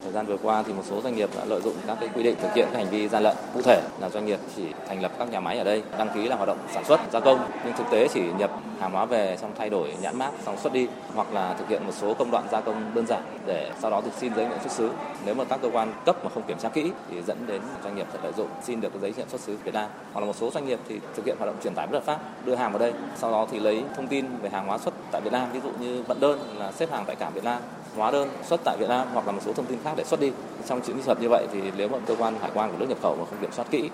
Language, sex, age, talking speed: Vietnamese, male, 20-39, 340 wpm